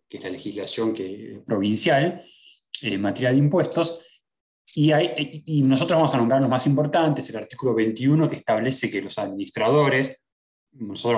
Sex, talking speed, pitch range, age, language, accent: male, 165 wpm, 120-160 Hz, 20-39, Spanish, Argentinian